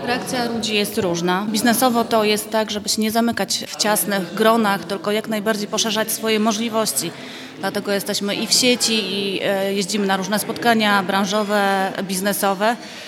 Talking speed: 150 wpm